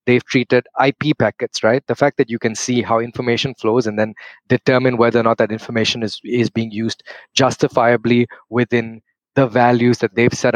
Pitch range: 115-130 Hz